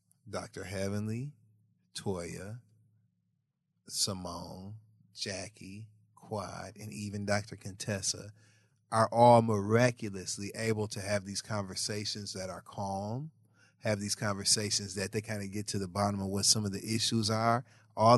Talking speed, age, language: 130 wpm, 30-49, English